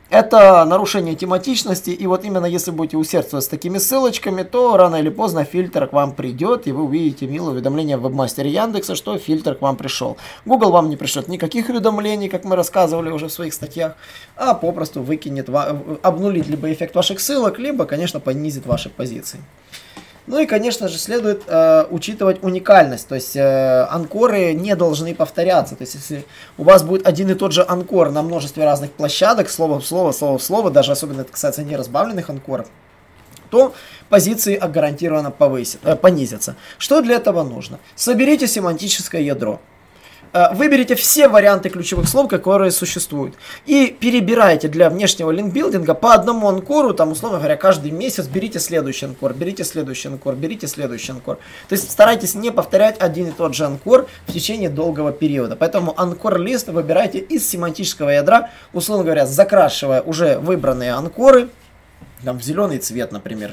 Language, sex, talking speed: Russian, male, 165 wpm